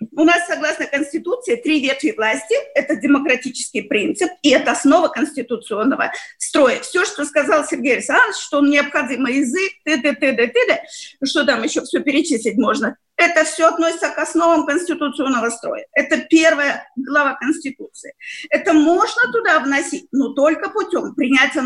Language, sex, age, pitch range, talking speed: Russian, female, 40-59, 270-330 Hz, 135 wpm